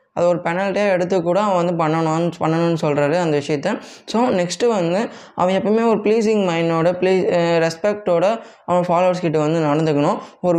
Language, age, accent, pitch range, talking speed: Tamil, 20-39, native, 160-195 Hz, 155 wpm